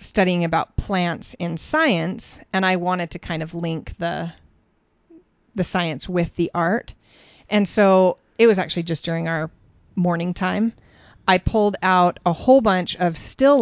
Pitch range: 175-215 Hz